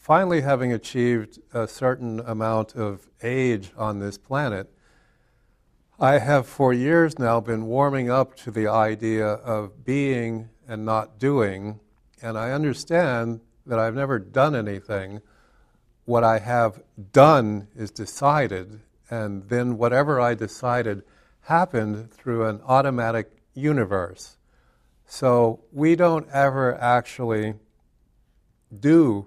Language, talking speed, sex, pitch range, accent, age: English, 115 wpm, male, 110-135 Hz, American, 60-79